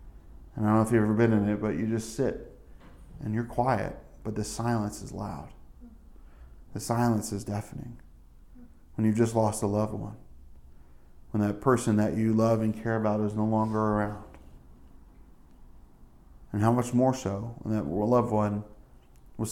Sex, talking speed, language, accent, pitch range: male, 170 wpm, English, American, 105-120 Hz